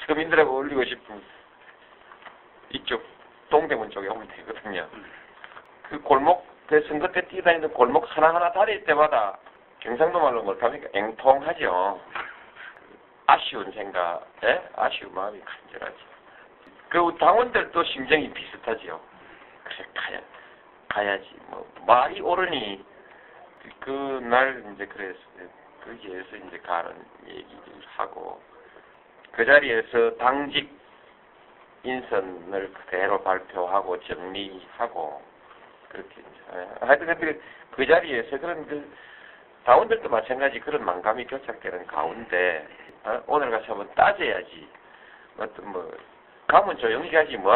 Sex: male